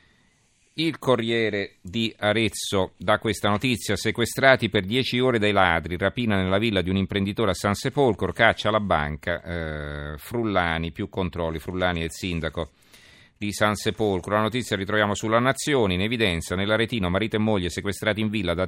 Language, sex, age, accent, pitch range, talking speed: Italian, male, 40-59, native, 90-115 Hz, 155 wpm